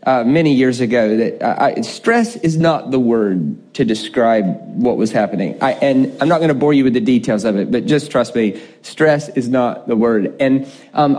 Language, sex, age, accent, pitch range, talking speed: English, male, 40-59, American, 135-180 Hz, 210 wpm